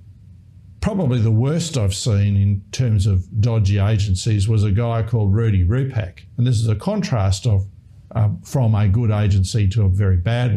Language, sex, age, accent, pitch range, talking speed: English, male, 50-69, Australian, 100-130 Hz, 175 wpm